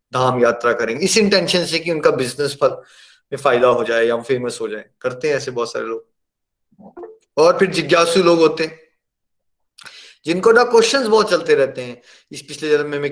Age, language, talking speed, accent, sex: 20-39, Hindi, 180 wpm, native, male